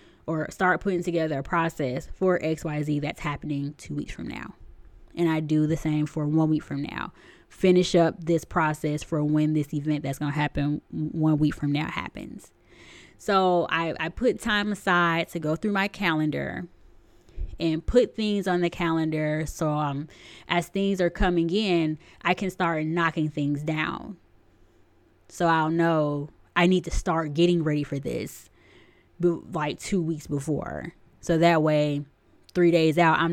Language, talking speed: English, 170 wpm